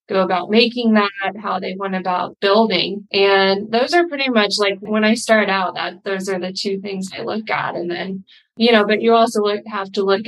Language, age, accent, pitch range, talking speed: English, 20-39, American, 195-220 Hz, 220 wpm